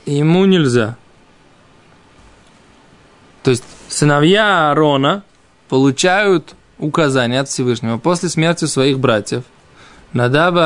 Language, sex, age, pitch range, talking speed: Russian, male, 20-39, 145-190 Hz, 90 wpm